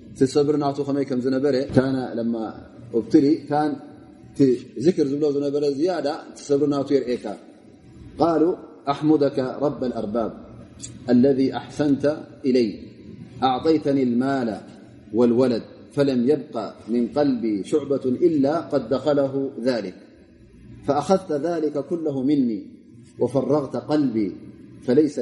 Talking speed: 90 wpm